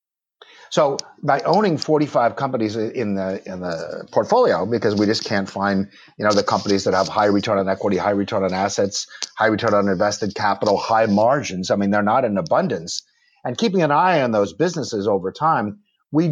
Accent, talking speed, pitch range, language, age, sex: American, 190 wpm, 100-150 Hz, English, 50-69, male